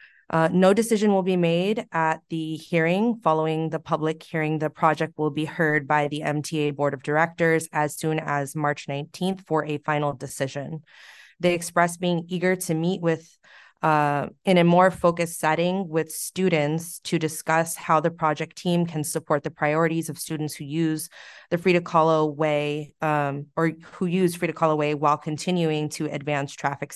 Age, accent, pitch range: 20-39, American, 150-170 Hz